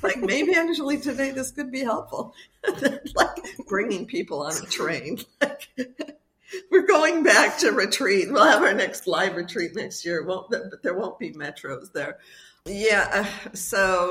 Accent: American